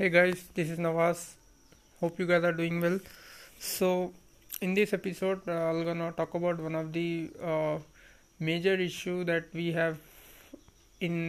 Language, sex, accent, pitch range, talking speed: English, male, Indian, 165-185 Hz, 165 wpm